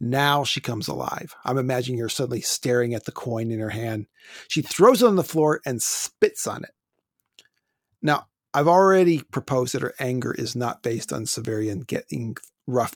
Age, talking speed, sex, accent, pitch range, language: 40-59, 180 wpm, male, American, 115-150 Hz, English